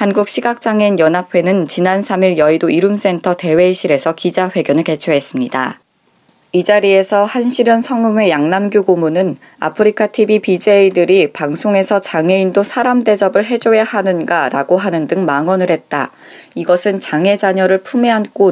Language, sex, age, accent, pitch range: Korean, female, 20-39, native, 175-200 Hz